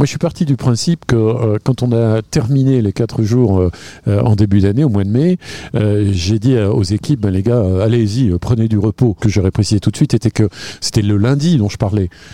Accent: French